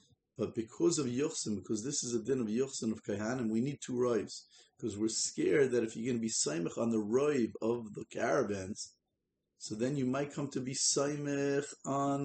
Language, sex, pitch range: English, male, 115-140 Hz